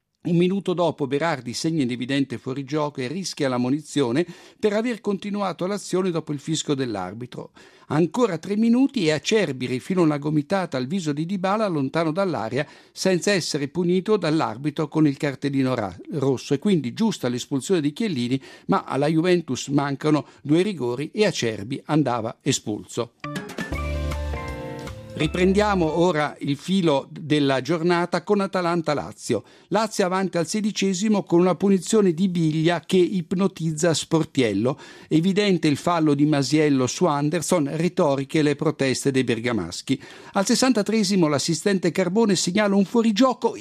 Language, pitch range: Italian, 140-195 Hz